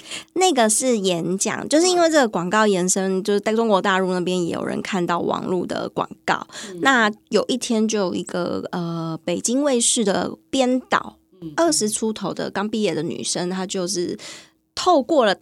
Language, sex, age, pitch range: Chinese, female, 20-39, 180-235 Hz